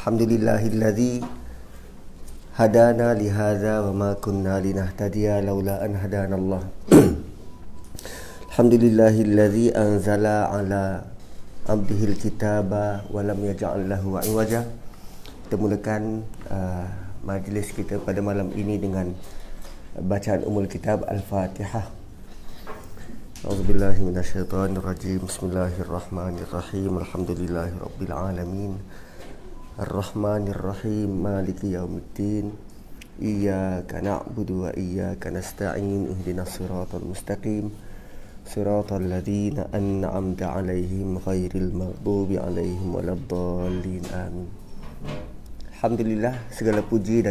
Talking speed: 80 wpm